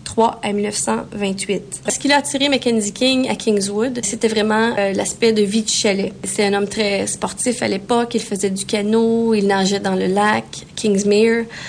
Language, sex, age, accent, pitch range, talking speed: English, female, 30-49, Canadian, 205-235 Hz, 185 wpm